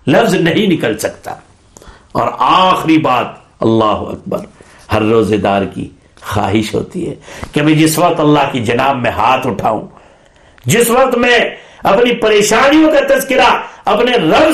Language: Urdu